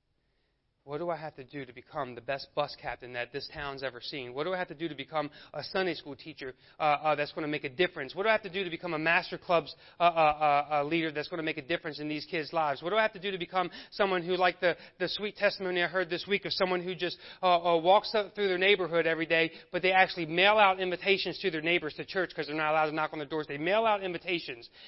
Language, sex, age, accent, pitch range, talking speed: English, male, 30-49, American, 145-190 Hz, 285 wpm